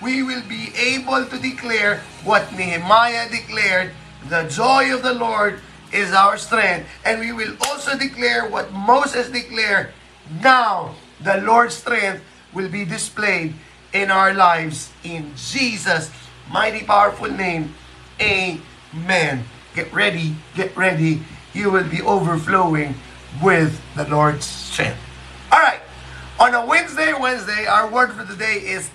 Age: 30-49